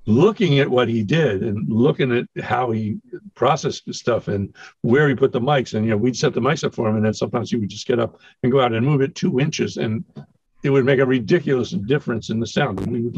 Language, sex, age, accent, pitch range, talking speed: English, male, 60-79, American, 115-150 Hz, 265 wpm